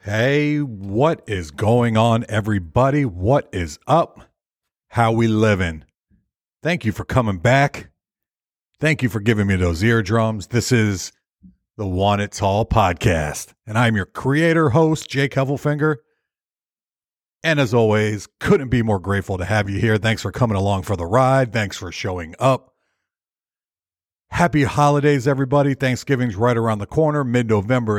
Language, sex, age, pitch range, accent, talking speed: English, male, 50-69, 100-140 Hz, American, 150 wpm